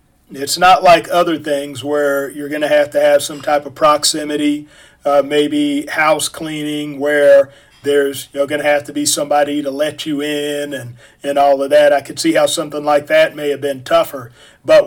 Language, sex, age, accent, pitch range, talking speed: English, male, 40-59, American, 145-180 Hz, 205 wpm